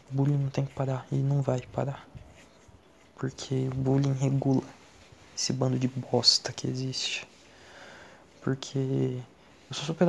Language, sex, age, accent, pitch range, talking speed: Portuguese, male, 20-39, Brazilian, 125-140 Hz, 145 wpm